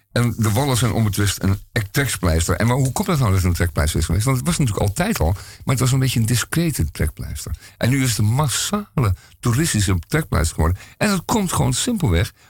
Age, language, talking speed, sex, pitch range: 50-69, Dutch, 220 wpm, male, 95-125 Hz